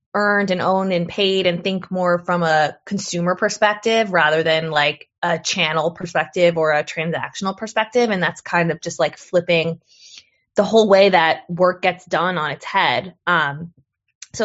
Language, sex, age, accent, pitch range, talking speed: English, female, 20-39, American, 160-195 Hz, 170 wpm